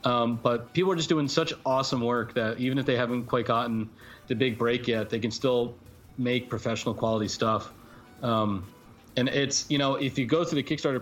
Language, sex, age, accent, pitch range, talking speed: English, male, 30-49, American, 110-130 Hz, 205 wpm